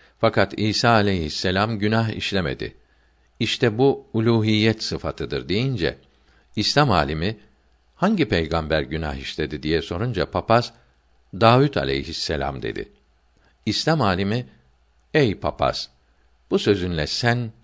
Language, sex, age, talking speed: Turkish, male, 50-69, 100 wpm